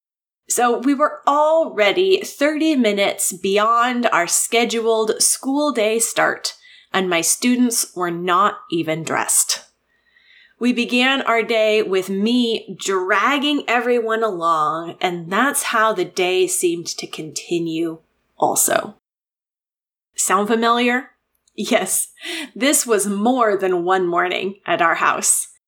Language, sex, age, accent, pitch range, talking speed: English, female, 20-39, American, 195-290 Hz, 115 wpm